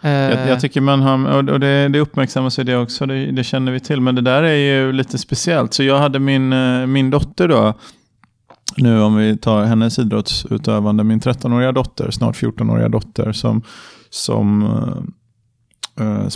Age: 30-49